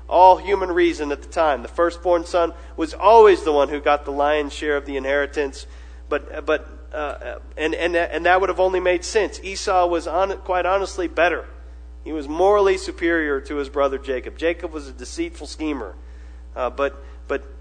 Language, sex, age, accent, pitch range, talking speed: English, male, 40-59, American, 135-190 Hz, 185 wpm